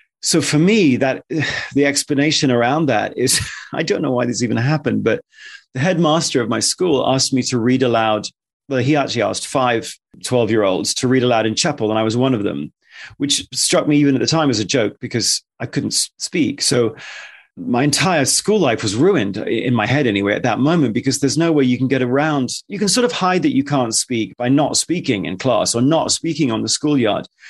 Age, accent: 30-49, British